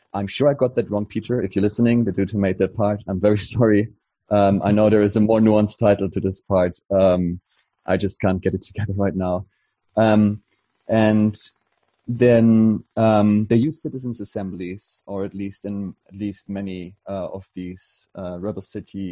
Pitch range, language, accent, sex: 95-105 Hz, English, German, male